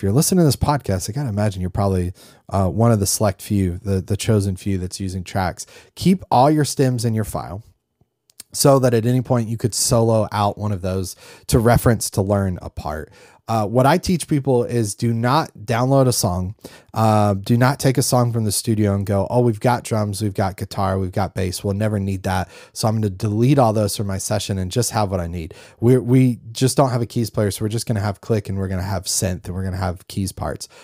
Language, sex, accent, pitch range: English, male, American, 95-125 Hz